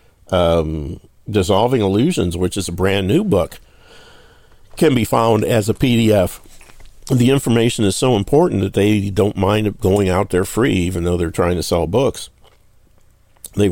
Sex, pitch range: male, 90-105 Hz